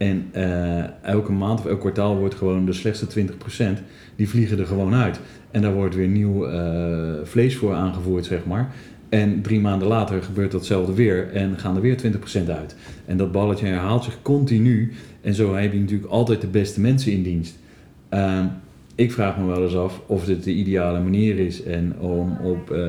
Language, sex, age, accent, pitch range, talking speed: Dutch, male, 40-59, Dutch, 90-115 Hz, 195 wpm